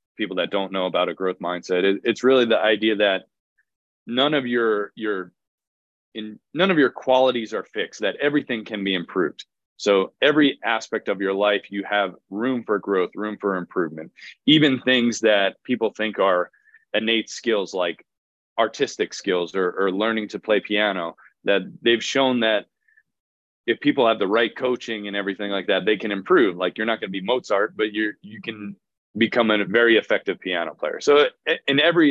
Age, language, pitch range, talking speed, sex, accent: 30-49, English, 95-120 Hz, 180 wpm, male, American